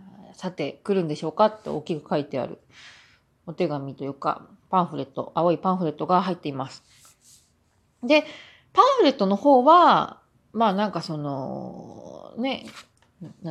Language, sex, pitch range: Japanese, female, 160-240 Hz